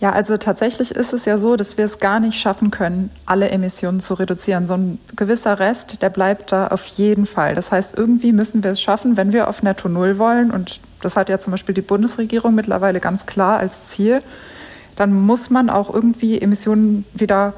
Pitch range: 190-225 Hz